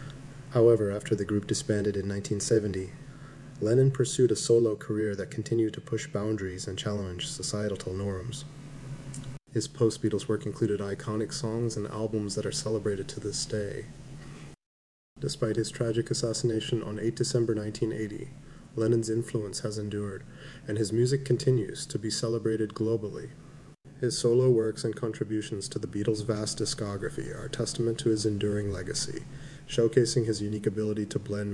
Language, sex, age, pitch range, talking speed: English, male, 30-49, 105-140 Hz, 150 wpm